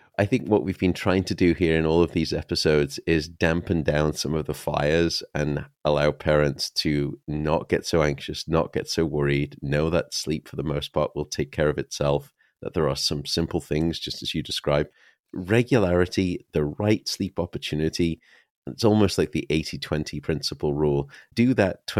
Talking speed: 190 wpm